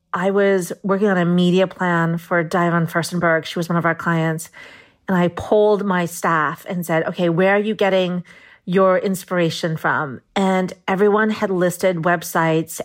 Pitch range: 170-195 Hz